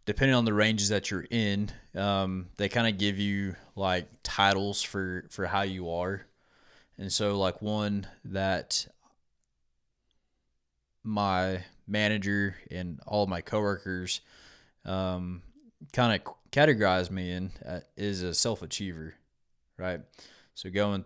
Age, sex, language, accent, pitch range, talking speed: 20-39, male, English, American, 90-100 Hz, 125 wpm